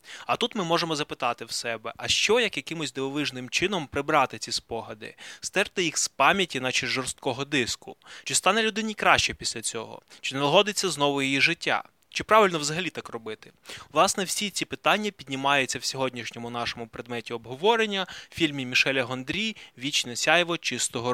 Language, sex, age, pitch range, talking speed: Ukrainian, male, 20-39, 120-150 Hz, 165 wpm